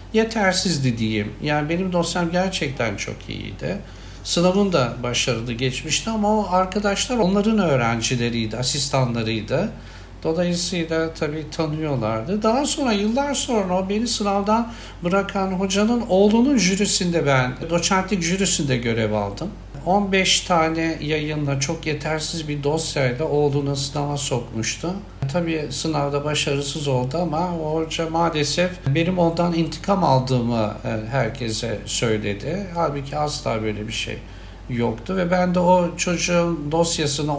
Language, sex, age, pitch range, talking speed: Turkish, male, 60-79, 125-175 Hz, 110 wpm